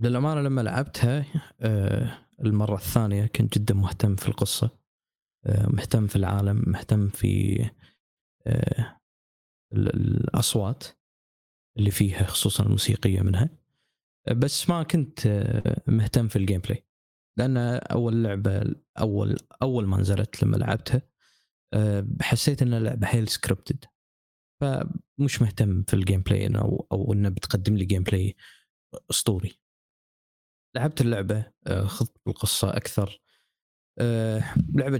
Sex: male